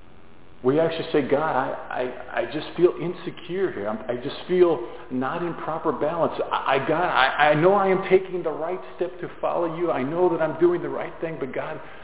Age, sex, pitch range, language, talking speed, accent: 50-69, male, 125-165 Hz, English, 220 wpm, American